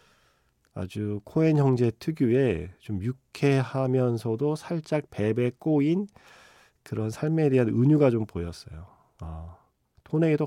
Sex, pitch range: male, 100-135 Hz